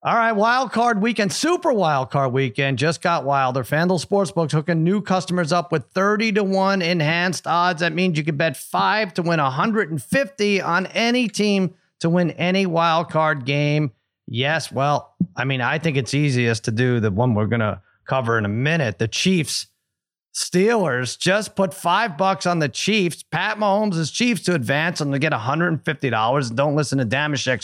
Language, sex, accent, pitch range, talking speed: English, male, American, 135-185 Hz, 185 wpm